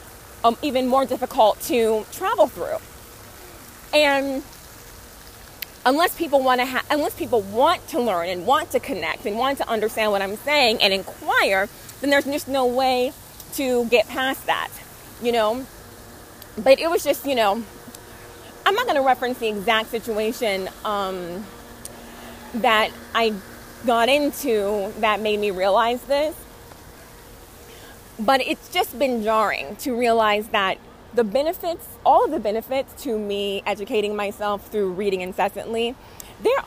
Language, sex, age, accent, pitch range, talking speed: English, female, 20-39, American, 210-285 Hz, 145 wpm